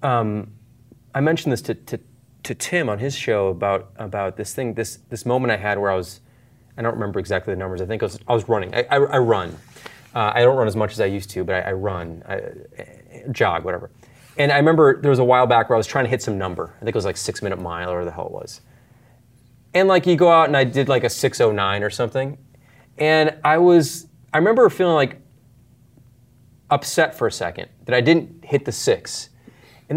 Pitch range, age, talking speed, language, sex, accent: 105-135 Hz, 30-49, 240 wpm, English, male, American